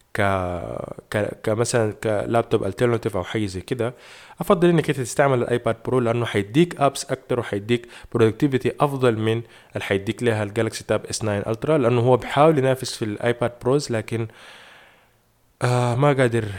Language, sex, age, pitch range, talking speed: Arabic, male, 20-39, 110-130 Hz, 150 wpm